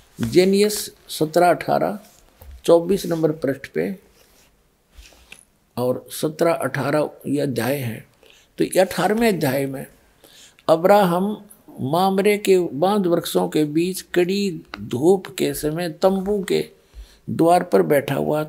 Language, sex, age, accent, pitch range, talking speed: Hindi, male, 50-69, native, 145-185 Hz, 110 wpm